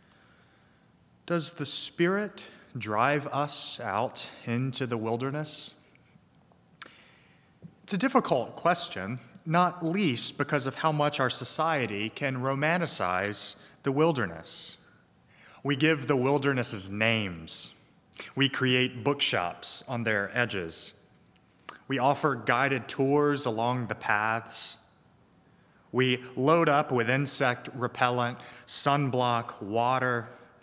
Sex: male